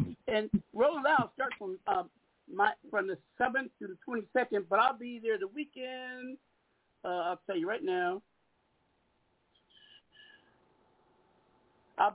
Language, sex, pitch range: English, male, 215-310 Hz